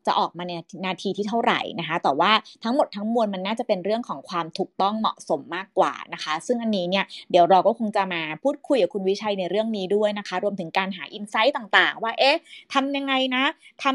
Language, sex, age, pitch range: Thai, female, 30-49, 195-255 Hz